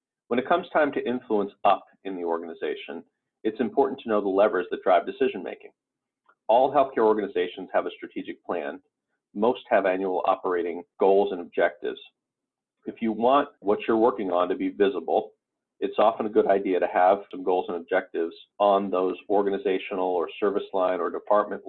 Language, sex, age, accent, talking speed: English, male, 40-59, American, 170 wpm